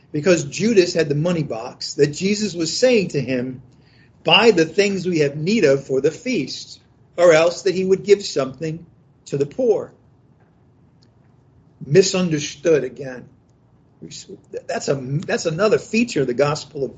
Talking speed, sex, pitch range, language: 150 wpm, male, 140-195 Hz, English